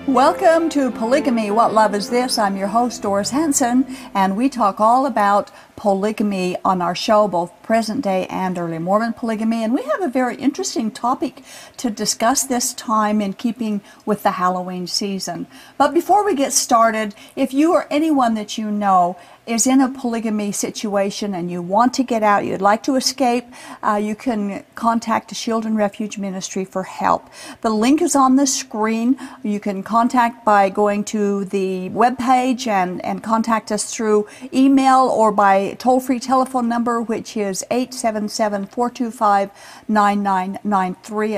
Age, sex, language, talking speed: 50-69, female, English, 160 wpm